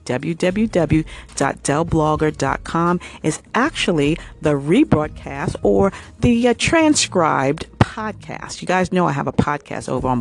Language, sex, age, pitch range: English, female, 40-59, 130-165 Hz